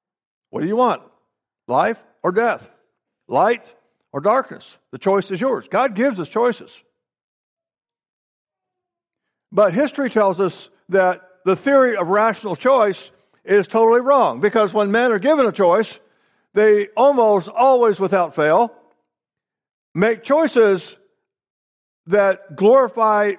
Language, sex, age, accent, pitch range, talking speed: English, male, 60-79, American, 170-225 Hz, 120 wpm